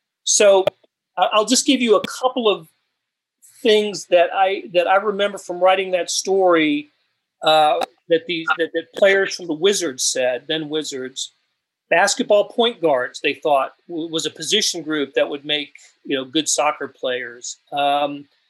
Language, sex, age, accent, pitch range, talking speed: English, male, 40-59, American, 150-200 Hz, 160 wpm